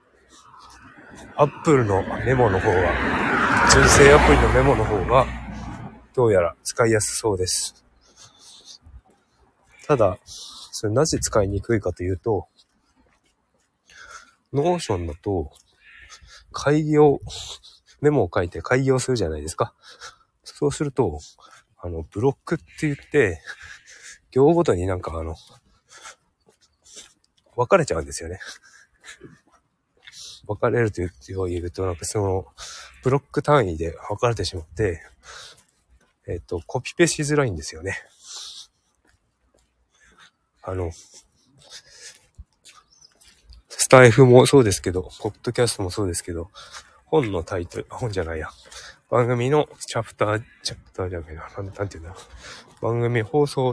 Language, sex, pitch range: Japanese, male, 90-130 Hz